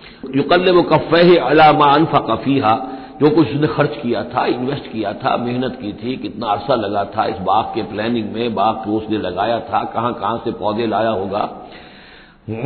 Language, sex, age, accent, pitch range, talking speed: Hindi, male, 60-79, native, 115-155 Hz, 185 wpm